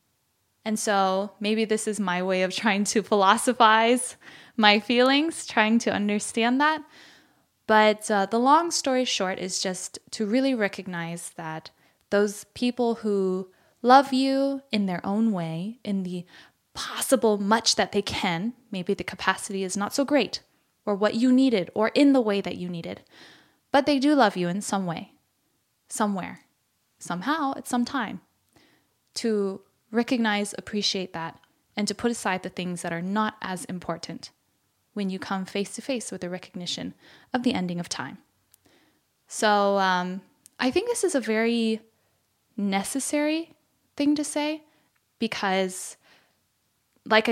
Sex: female